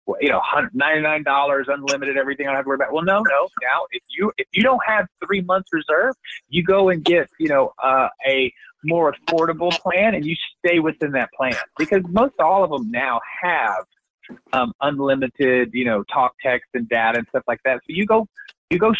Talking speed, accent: 210 wpm, American